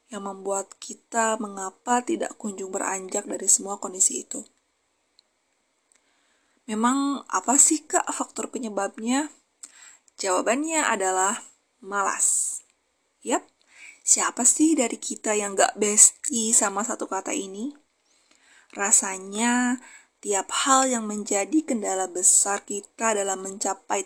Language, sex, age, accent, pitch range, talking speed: Indonesian, female, 20-39, native, 200-280 Hz, 105 wpm